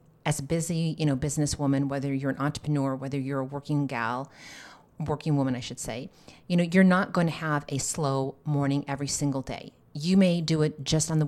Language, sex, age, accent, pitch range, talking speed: English, female, 40-59, American, 140-165 Hz, 215 wpm